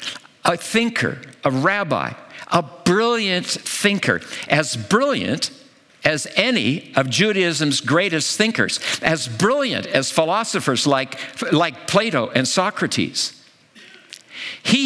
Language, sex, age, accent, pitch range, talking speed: English, male, 60-79, American, 140-220 Hz, 100 wpm